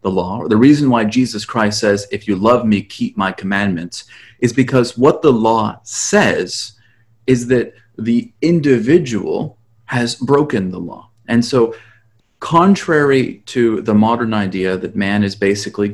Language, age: English, 30-49